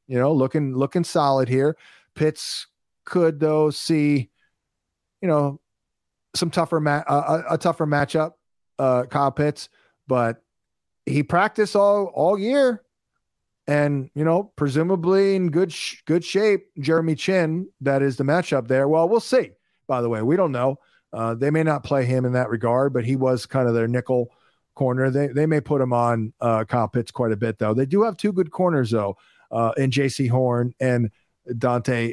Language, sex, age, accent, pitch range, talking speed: English, male, 40-59, American, 120-160 Hz, 180 wpm